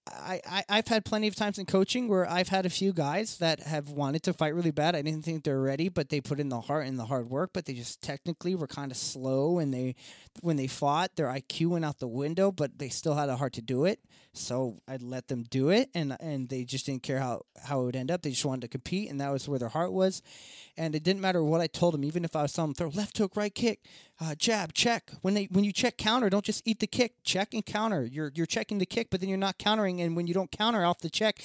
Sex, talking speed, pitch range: male, 280 wpm, 140-190 Hz